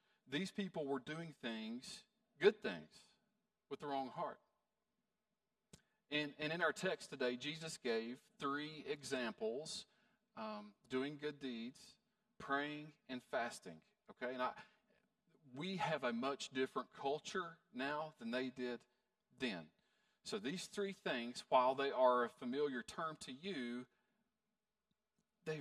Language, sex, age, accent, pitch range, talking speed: English, male, 40-59, American, 150-215 Hz, 130 wpm